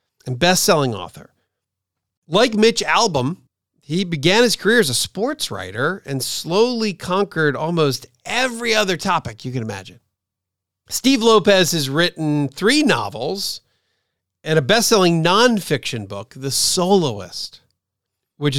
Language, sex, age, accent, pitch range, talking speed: English, male, 40-59, American, 125-195 Hz, 125 wpm